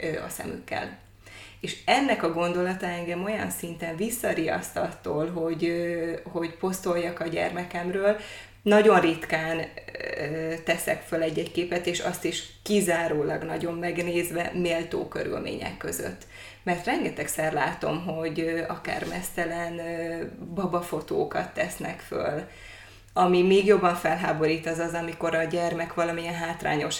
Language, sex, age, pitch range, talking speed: Hungarian, female, 20-39, 165-185 Hz, 115 wpm